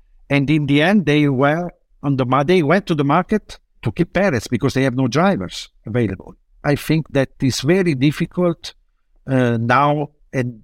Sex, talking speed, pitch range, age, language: male, 175 wpm, 110-145 Hz, 60-79, English